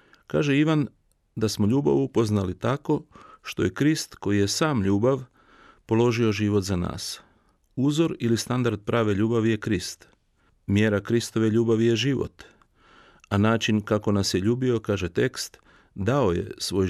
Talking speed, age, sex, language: 145 wpm, 40-59, male, Croatian